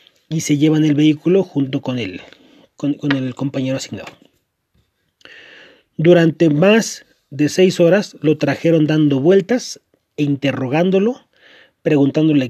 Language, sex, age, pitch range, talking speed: Spanish, male, 30-49, 140-185 Hz, 120 wpm